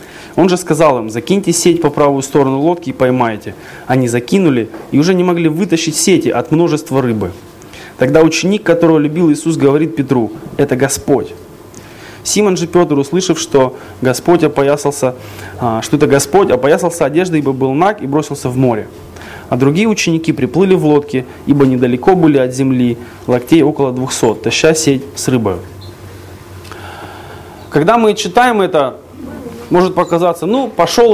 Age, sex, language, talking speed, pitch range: 20-39, male, Russian, 145 wpm, 115-170 Hz